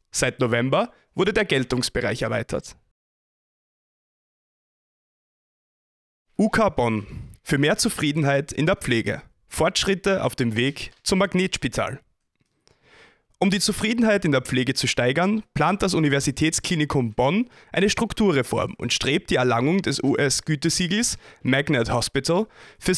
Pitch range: 130-180 Hz